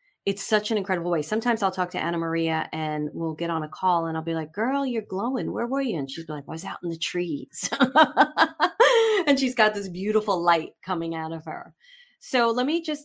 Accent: American